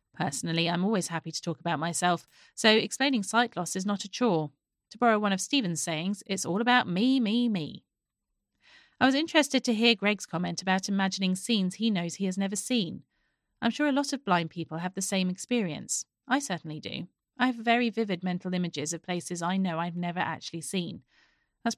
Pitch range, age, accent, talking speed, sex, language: 170-220 Hz, 30-49, British, 200 wpm, female, English